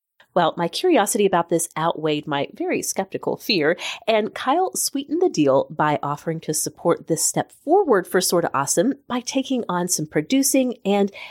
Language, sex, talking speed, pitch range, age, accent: English, female, 165 wpm, 165-270 Hz, 30-49, American